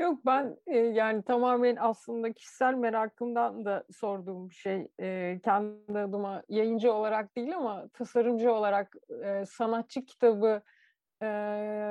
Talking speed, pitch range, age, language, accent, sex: 115 wpm, 210-260 Hz, 40-59, Turkish, native, female